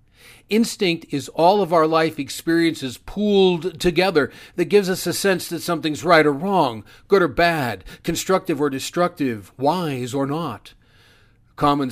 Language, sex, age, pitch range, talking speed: English, male, 50-69, 125-165 Hz, 145 wpm